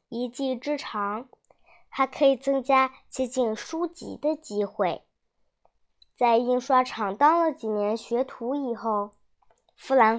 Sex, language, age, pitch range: male, Chinese, 10-29, 225-290 Hz